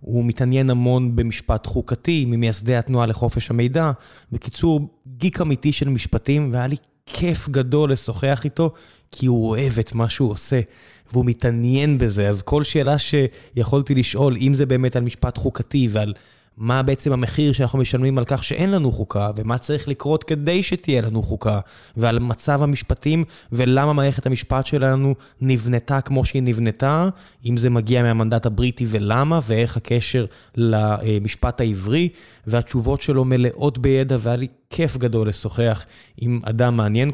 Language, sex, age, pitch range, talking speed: Hebrew, male, 20-39, 115-145 Hz, 150 wpm